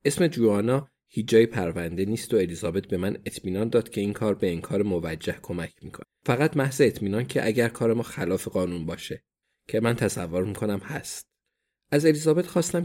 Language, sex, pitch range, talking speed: Persian, male, 105-140 Hz, 175 wpm